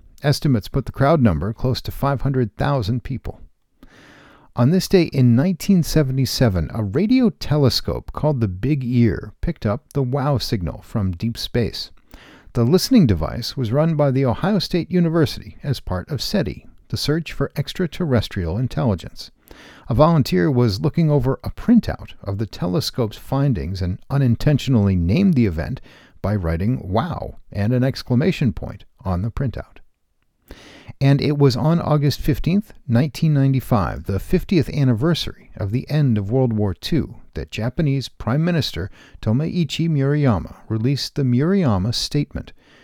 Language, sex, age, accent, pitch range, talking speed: English, male, 50-69, American, 110-150 Hz, 140 wpm